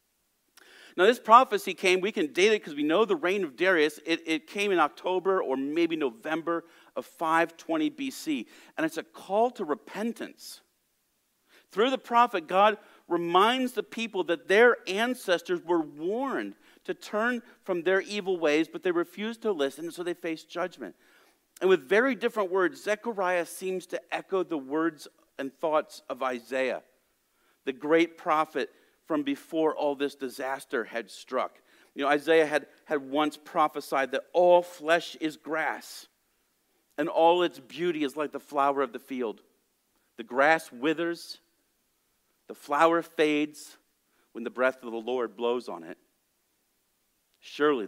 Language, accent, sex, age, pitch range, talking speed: English, American, male, 50-69, 150-220 Hz, 155 wpm